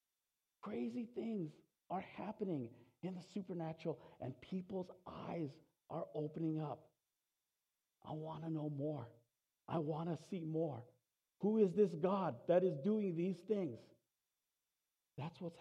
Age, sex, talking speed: 50-69, male, 130 wpm